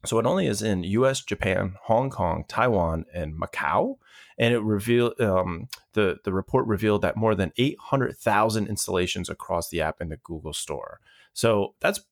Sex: male